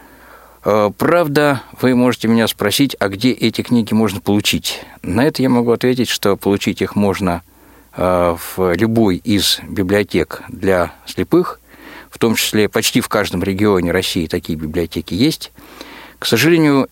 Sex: male